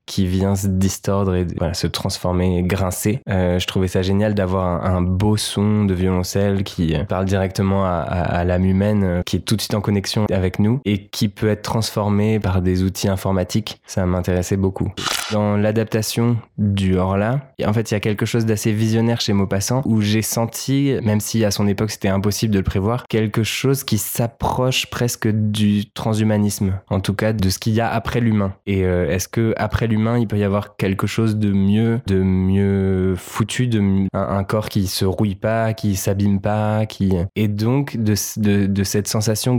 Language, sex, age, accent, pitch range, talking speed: French, male, 20-39, French, 95-110 Hz, 200 wpm